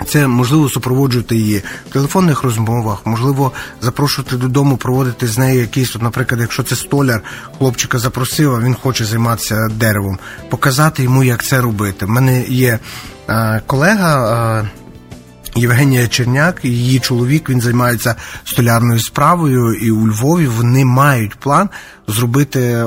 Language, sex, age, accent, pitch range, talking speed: Ukrainian, male, 30-49, native, 115-140 Hz, 130 wpm